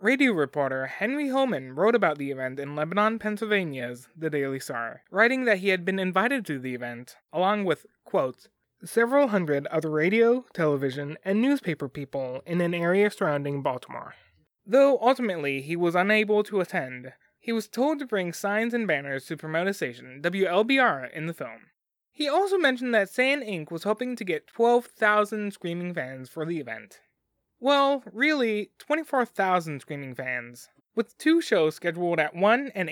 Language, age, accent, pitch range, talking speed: English, 20-39, American, 145-235 Hz, 165 wpm